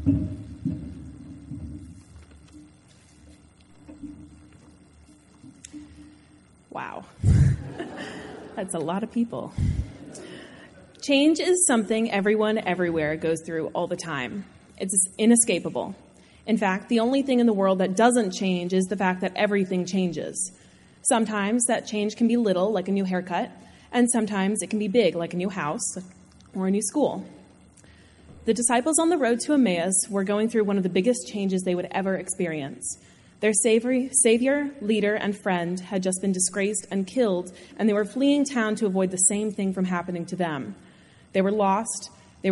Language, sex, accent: English, female, American